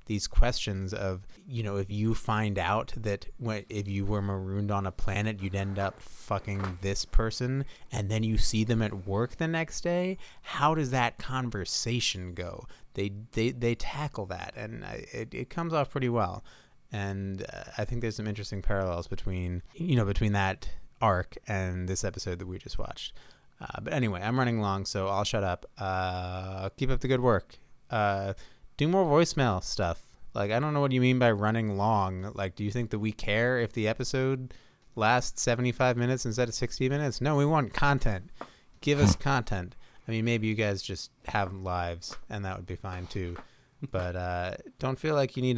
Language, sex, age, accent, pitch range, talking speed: English, male, 30-49, American, 95-125 Hz, 195 wpm